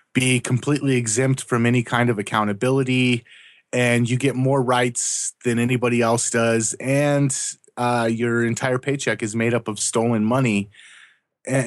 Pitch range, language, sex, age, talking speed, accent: 105-125 Hz, English, male, 30-49, 150 wpm, American